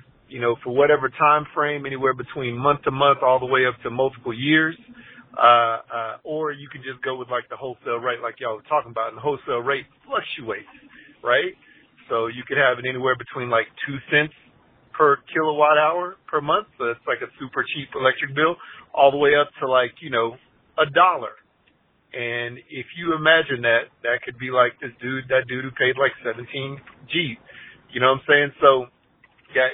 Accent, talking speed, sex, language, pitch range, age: American, 200 wpm, male, English, 120-145 Hz, 40-59